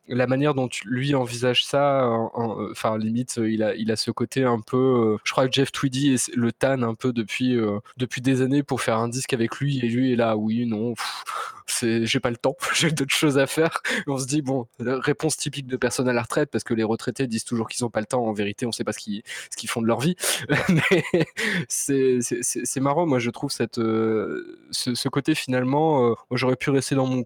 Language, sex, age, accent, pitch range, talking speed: French, male, 20-39, French, 115-135 Hz, 255 wpm